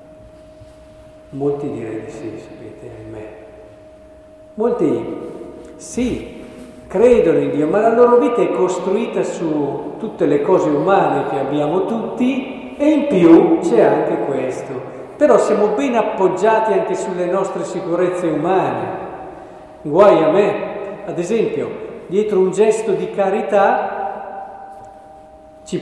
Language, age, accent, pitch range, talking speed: Italian, 50-69, native, 170-260 Hz, 120 wpm